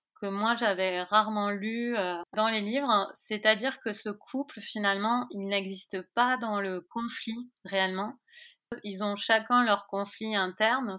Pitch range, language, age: 200-245 Hz, French, 30-49